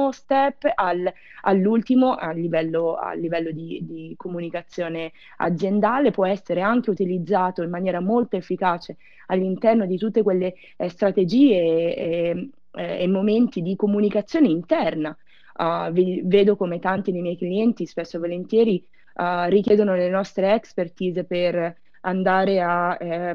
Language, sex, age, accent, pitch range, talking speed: Italian, female, 20-39, native, 175-215 Hz, 115 wpm